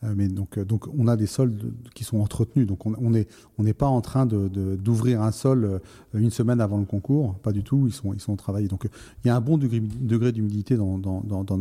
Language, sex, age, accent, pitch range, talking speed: French, male, 30-49, French, 105-130 Hz, 260 wpm